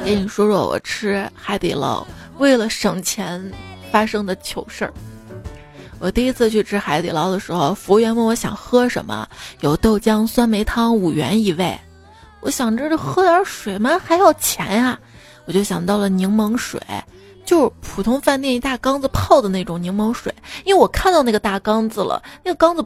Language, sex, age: Chinese, female, 20-39